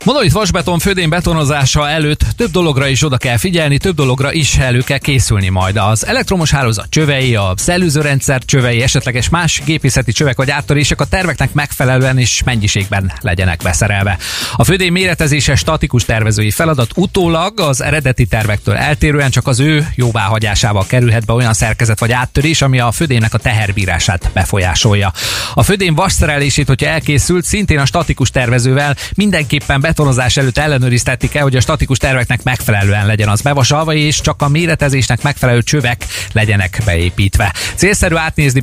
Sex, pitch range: male, 110-150 Hz